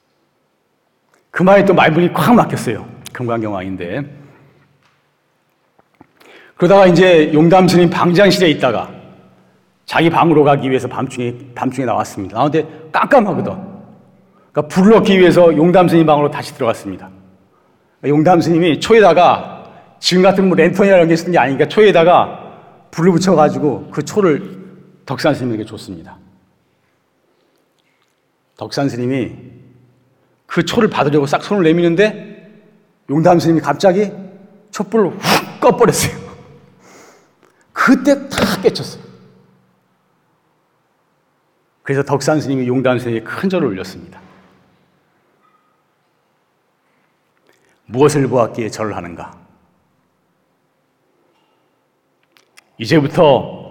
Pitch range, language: 125-185 Hz, Korean